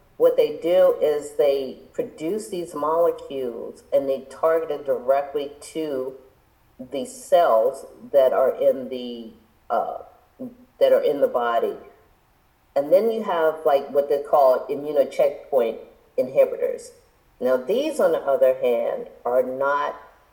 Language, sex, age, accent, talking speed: English, female, 50-69, American, 135 wpm